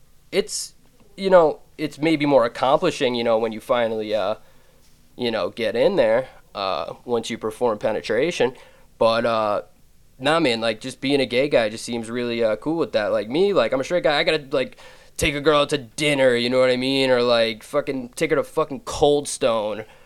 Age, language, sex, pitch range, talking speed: 20-39, English, male, 115-145 Hz, 210 wpm